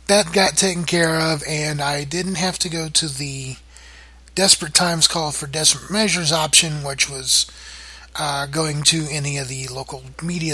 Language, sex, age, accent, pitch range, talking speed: English, male, 30-49, American, 125-165 Hz, 170 wpm